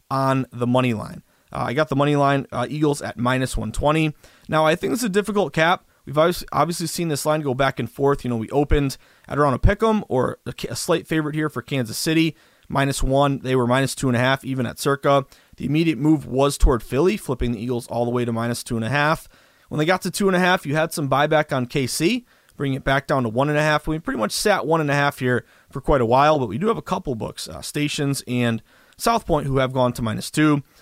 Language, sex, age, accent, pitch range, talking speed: English, male, 30-49, American, 125-160 Hz, 255 wpm